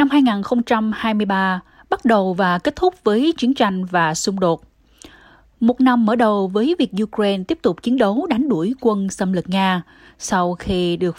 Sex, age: female, 20-39